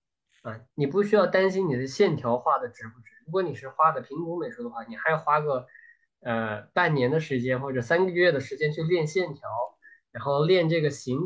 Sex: male